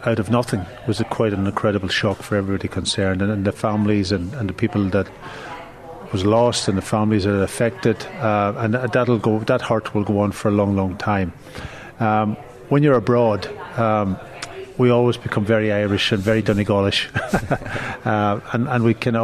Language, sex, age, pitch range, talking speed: English, male, 40-59, 105-120 Hz, 180 wpm